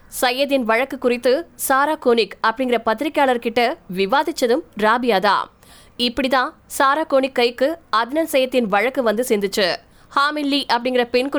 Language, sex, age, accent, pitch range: Tamil, female, 20-39, native, 240-290 Hz